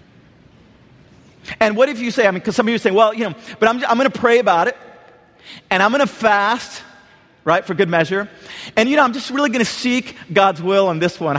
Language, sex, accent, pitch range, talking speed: English, male, American, 190-235 Hz, 240 wpm